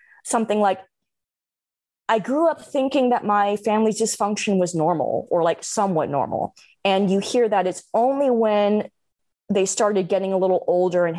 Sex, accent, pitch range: female, American, 170-220 Hz